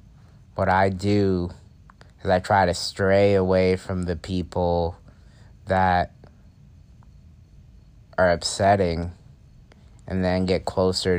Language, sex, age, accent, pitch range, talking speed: English, male, 30-49, American, 90-105 Hz, 100 wpm